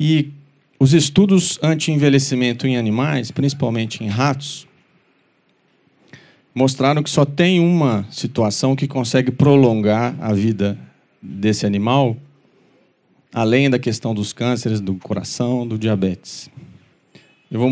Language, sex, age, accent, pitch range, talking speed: Portuguese, male, 40-59, Brazilian, 115-145 Hz, 110 wpm